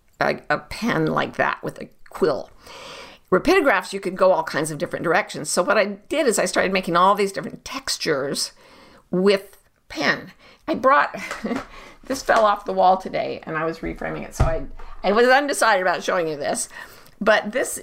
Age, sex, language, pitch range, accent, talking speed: 50-69, female, English, 180-225 Hz, American, 185 wpm